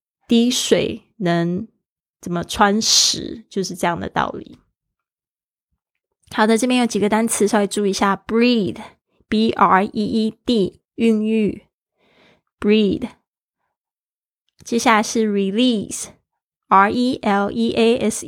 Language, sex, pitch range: Chinese, female, 200-235 Hz